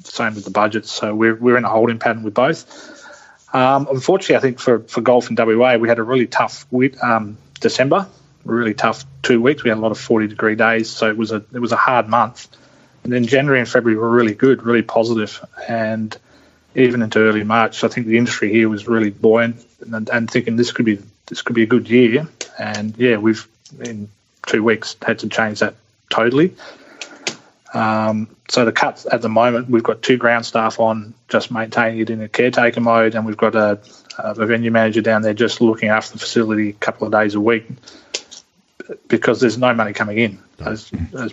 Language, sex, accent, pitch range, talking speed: English, male, Australian, 110-120 Hz, 210 wpm